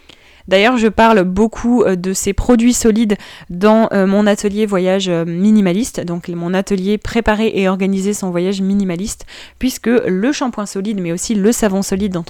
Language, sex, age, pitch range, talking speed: French, female, 20-39, 180-220 Hz, 155 wpm